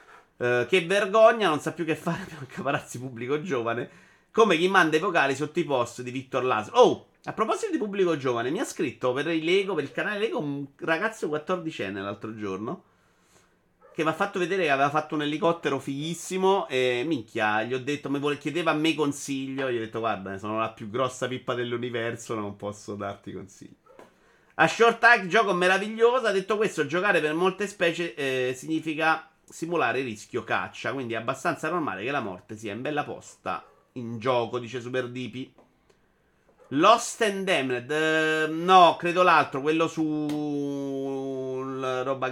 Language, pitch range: Italian, 125-165 Hz